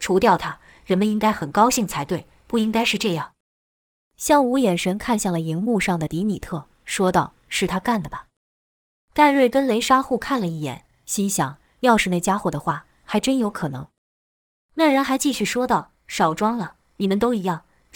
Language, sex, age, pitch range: Chinese, female, 20-39, 175-235 Hz